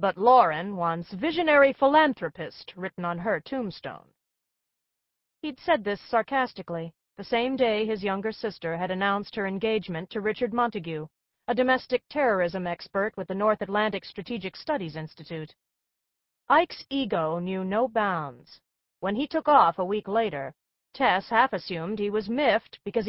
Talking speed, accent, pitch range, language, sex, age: 145 wpm, American, 180-235 Hz, English, female, 40-59